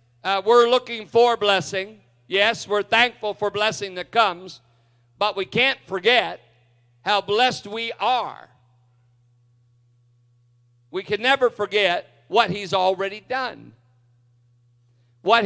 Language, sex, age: English, male, 50-69